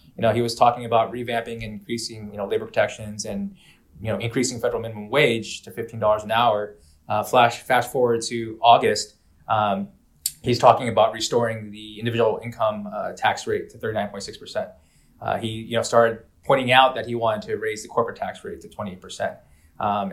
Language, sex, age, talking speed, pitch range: English, male, 20-39, 180 wpm, 105-125 Hz